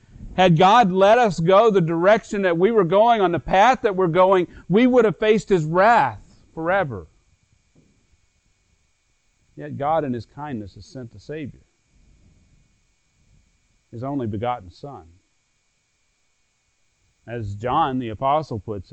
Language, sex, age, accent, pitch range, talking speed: English, male, 40-59, American, 105-160 Hz, 135 wpm